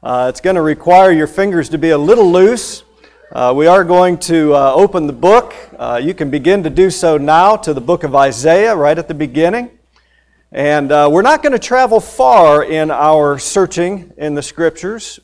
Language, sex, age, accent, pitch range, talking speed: English, male, 50-69, American, 140-185 Hz, 205 wpm